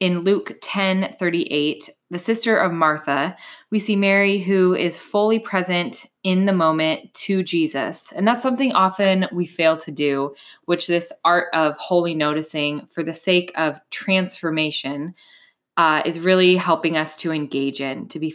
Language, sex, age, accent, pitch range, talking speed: English, female, 10-29, American, 160-200 Hz, 160 wpm